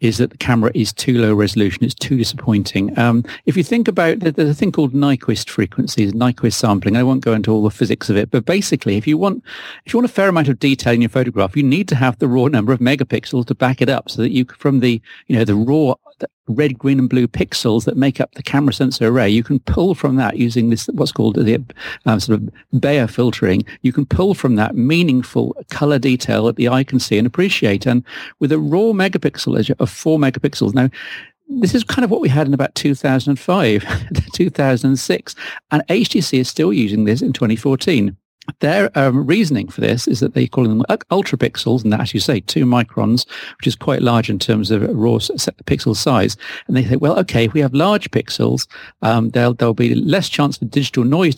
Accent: British